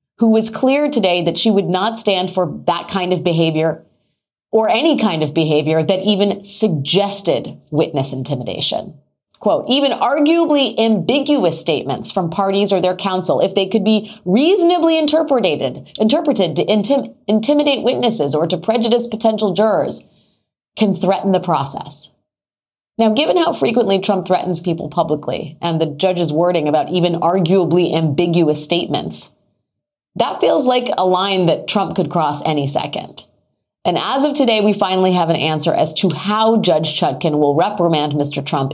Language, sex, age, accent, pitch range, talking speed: English, female, 30-49, American, 155-215 Hz, 155 wpm